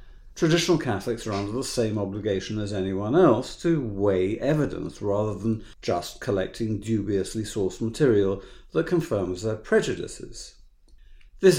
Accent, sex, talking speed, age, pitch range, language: British, male, 130 wpm, 50-69, 95-130 Hz, English